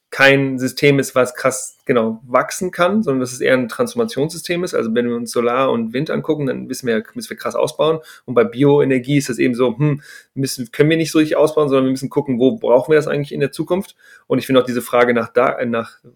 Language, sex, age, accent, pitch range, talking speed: German, male, 30-49, German, 125-155 Hz, 245 wpm